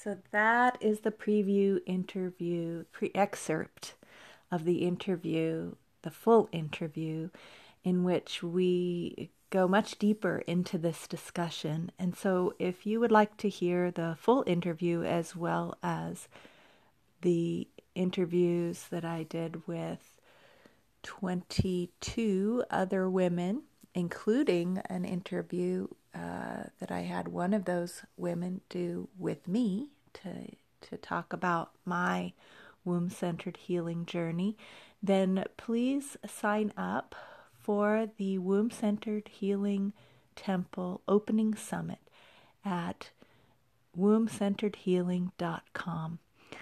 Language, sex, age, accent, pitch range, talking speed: English, female, 40-59, American, 175-205 Hz, 105 wpm